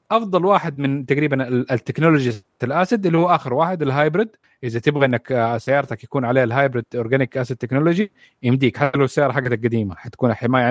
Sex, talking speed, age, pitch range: male, 155 wpm, 30-49, 115-140 Hz